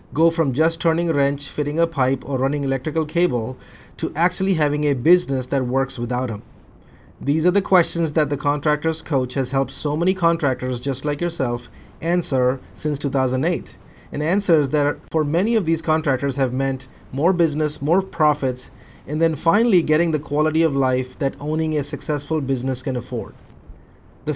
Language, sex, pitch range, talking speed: English, male, 135-165 Hz, 175 wpm